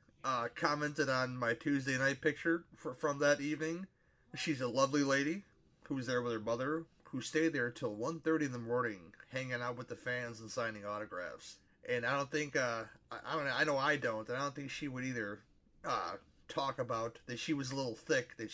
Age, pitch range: 30-49, 120-160 Hz